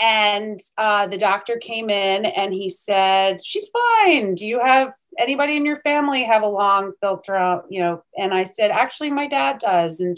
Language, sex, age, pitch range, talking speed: English, female, 30-49, 200-255 Hz, 190 wpm